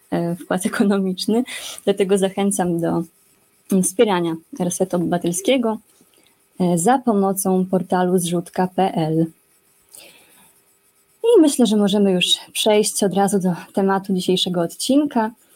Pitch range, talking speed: 180-220 Hz, 95 wpm